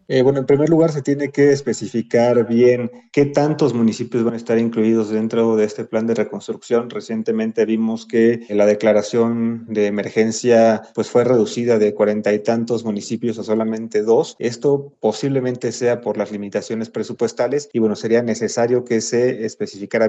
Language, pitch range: Spanish, 110-125 Hz